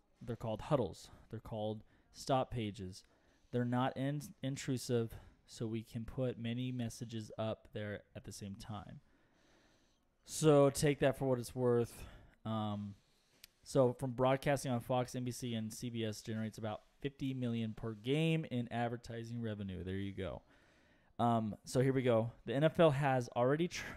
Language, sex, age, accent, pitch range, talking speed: English, male, 20-39, American, 110-130 Hz, 150 wpm